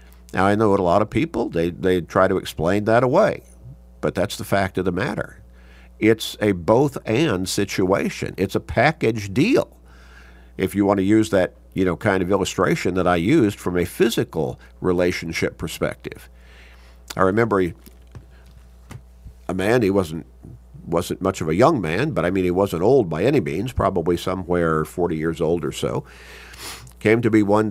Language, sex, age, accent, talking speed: English, male, 50-69, American, 180 wpm